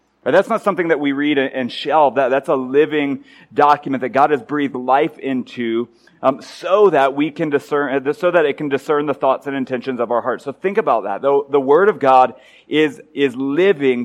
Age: 30-49